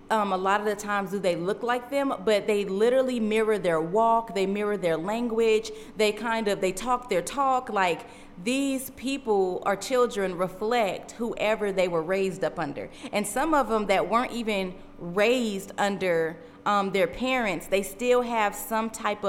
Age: 30-49